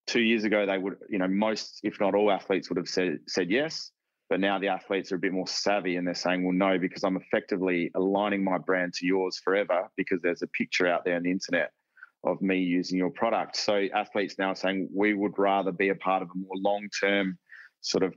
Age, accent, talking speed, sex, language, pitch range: 20-39, Australian, 240 wpm, male, English, 90-100 Hz